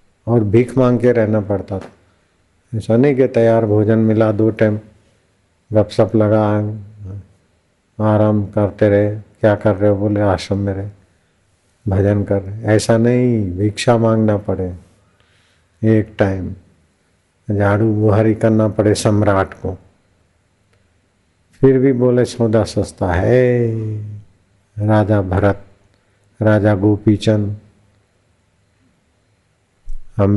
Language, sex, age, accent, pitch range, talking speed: Hindi, male, 50-69, native, 100-115 Hz, 110 wpm